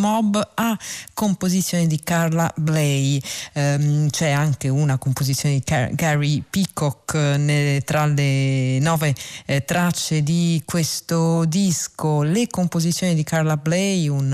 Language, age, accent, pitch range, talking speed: Italian, 40-59, native, 140-175 Hz, 130 wpm